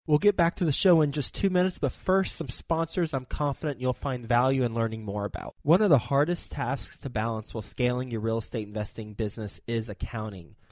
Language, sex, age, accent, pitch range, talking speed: English, male, 20-39, American, 115-140 Hz, 220 wpm